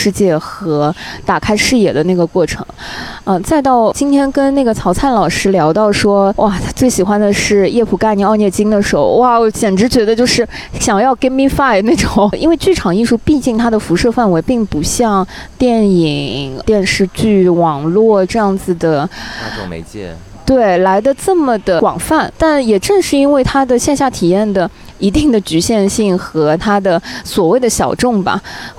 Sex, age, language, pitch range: female, 20-39, Chinese, 180-235 Hz